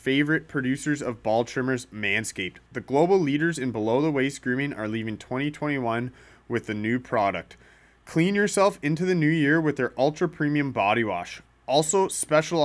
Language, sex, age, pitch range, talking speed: English, male, 30-49, 120-155 Hz, 165 wpm